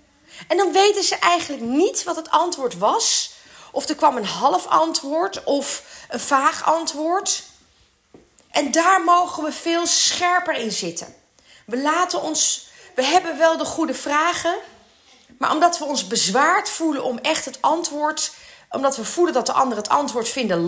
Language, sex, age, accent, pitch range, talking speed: Dutch, female, 30-49, Dutch, 250-340 Hz, 155 wpm